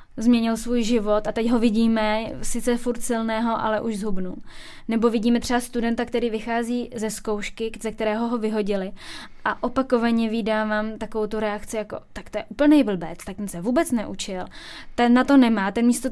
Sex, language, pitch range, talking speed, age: female, Czech, 215-240 Hz, 180 wpm, 10-29